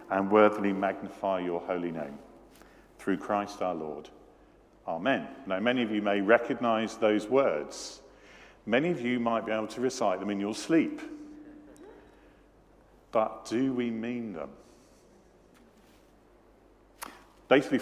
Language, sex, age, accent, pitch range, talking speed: English, male, 50-69, British, 95-125 Hz, 125 wpm